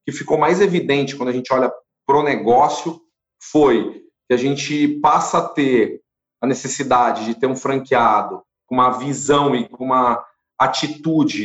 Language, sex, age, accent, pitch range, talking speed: Portuguese, male, 40-59, Brazilian, 130-160 Hz, 160 wpm